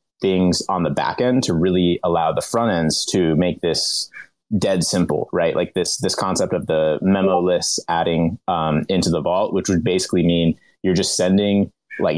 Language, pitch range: English, 85-100 Hz